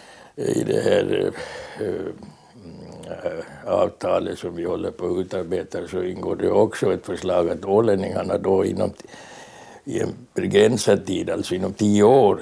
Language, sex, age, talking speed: Swedish, male, 60-79, 155 wpm